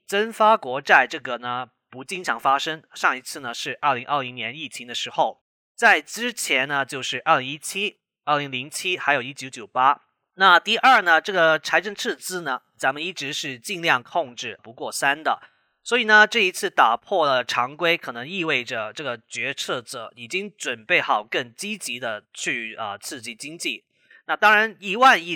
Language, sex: Chinese, male